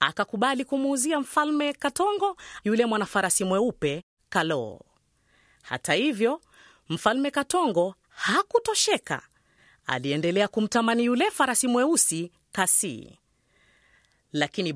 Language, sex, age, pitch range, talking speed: Swahili, female, 30-49, 180-295 Hz, 80 wpm